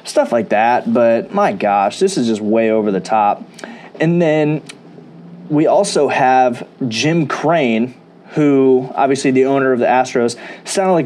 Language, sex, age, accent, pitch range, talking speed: English, male, 20-39, American, 125-155 Hz, 155 wpm